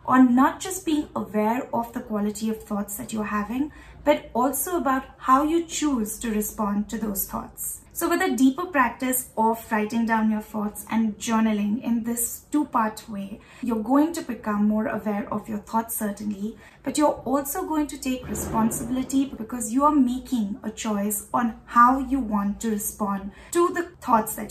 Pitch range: 220-280 Hz